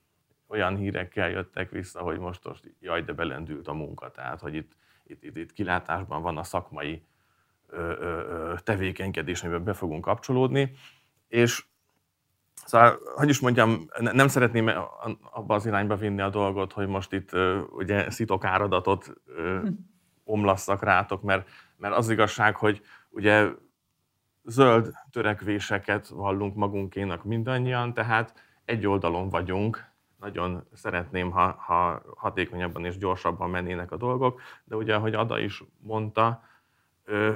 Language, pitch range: Hungarian, 90-115 Hz